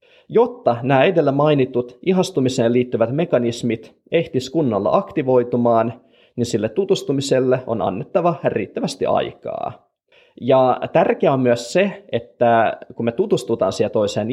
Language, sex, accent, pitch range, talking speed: Finnish, male, native, 115-155 Hz, 115 wpm